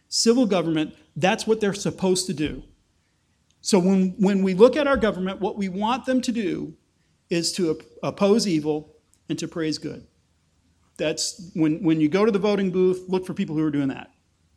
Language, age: English, 40-59